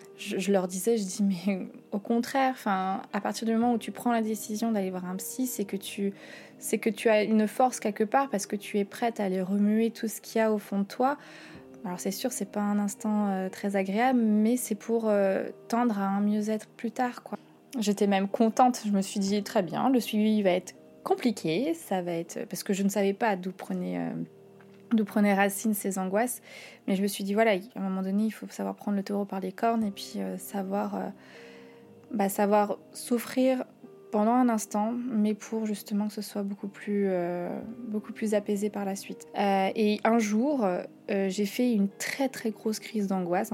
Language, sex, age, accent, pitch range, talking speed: French, female, 20-39, French, 195-225 Hz, 215 wpm